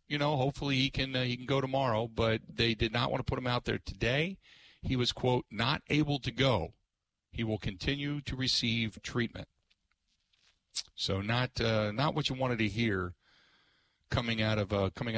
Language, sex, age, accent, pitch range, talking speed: English, male, 50-69, American, 105-140 Hz, 190 wpm